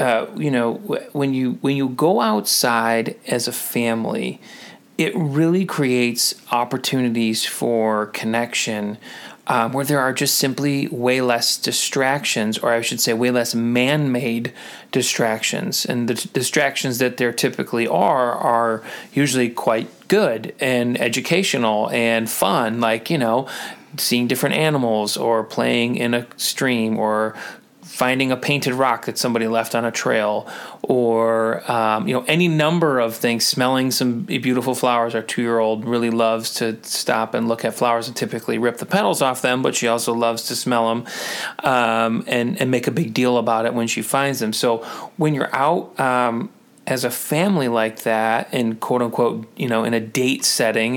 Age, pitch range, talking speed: 30-49, 115-130 Hz, 165 wpm